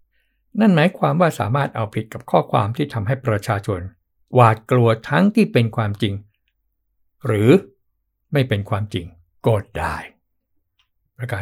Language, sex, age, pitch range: Thai, male, 60-79, 105-130 Hz